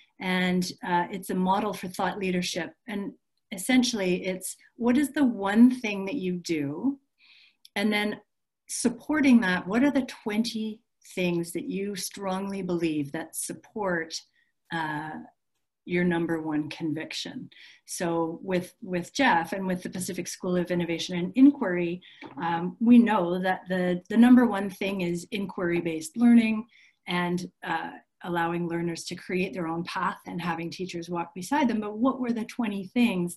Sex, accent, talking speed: female, American, 150 wpm